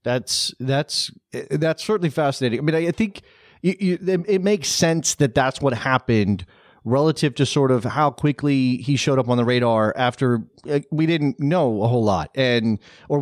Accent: American